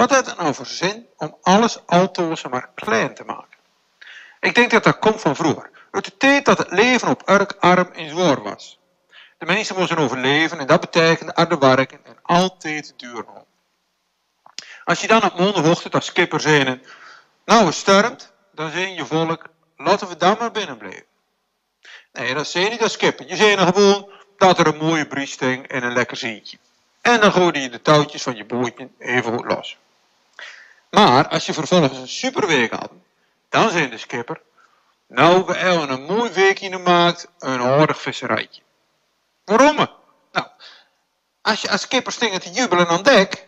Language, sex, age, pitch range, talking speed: Dutch, male, 50-69, 145-205 Hz, 175 wpm